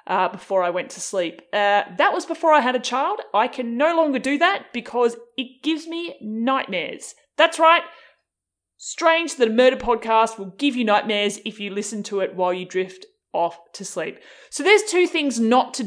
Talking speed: 200 wpm